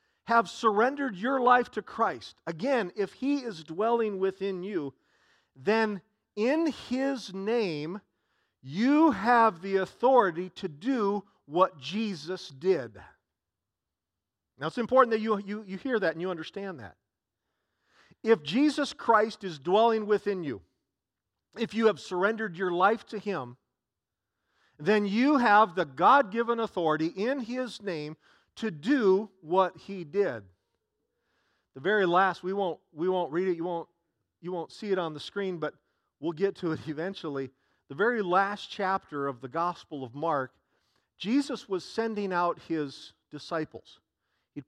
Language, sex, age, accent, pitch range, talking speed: English, male, 40-59, American, 155-215 Hz, 145 wpm